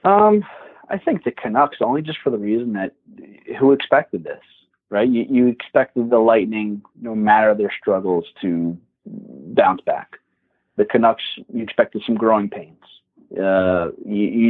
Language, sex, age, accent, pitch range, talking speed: English, male, 30-49, American, 105-125 Hz, 155 wpm